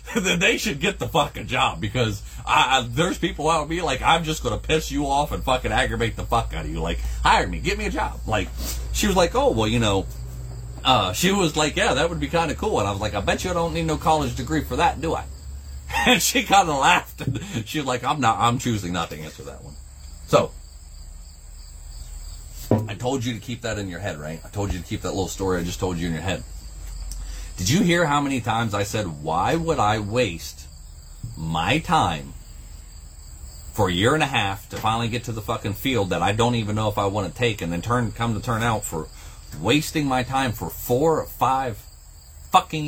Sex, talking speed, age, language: male, 240 wpm, 30-49, English